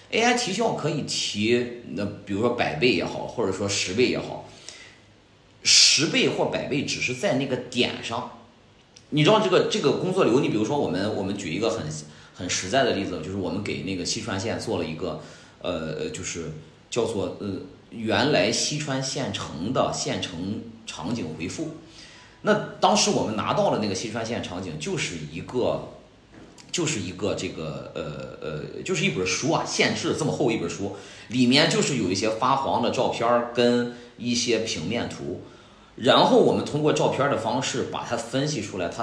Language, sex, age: Chinese, male, 40-59